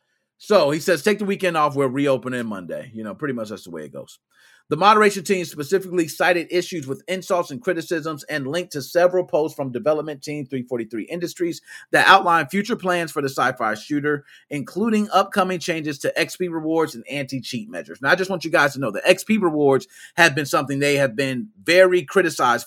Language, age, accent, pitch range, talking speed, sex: English, 30-49, American, 145-195 Hz, 200 wpm, male